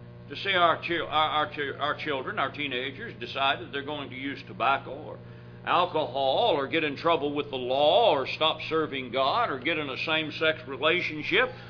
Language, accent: English, American